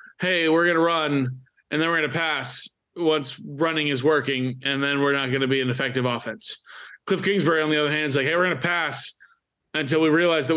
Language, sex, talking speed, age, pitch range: English, male, 240 wpm, 20-39, 130-160 Hz